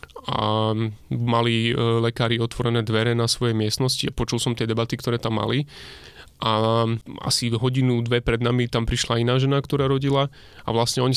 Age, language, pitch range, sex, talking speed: 20-39, Slovak, 115-130 Hz, male, 175 wpm